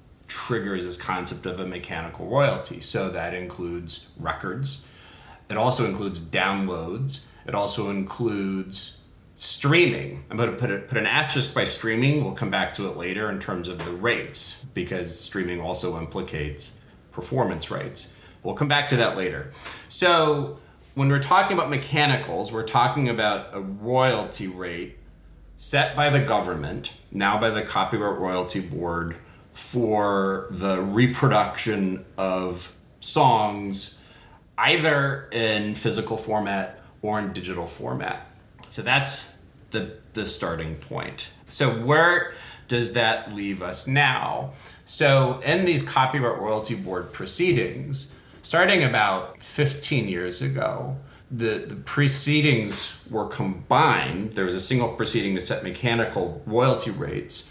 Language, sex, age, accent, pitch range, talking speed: English, male, 40-59, American, 90-135 Hz, 130 wpm